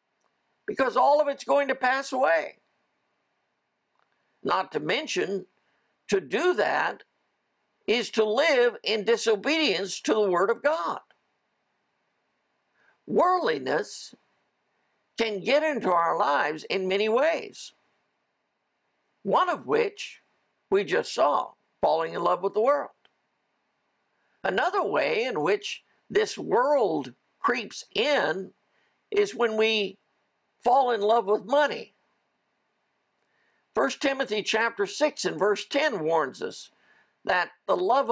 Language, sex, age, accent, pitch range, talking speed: English, male, 60-79, American, 215-335 Hz, 115 wpm